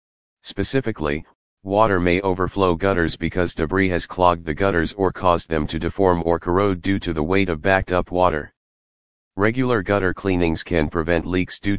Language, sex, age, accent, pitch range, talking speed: English, male, 40-59, American, 85-95 Hz, 170 wpm